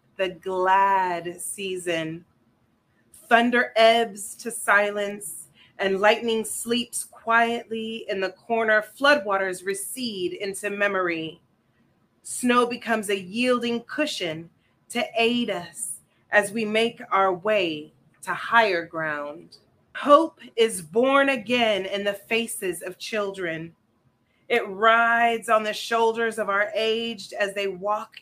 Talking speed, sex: 115 wpm, female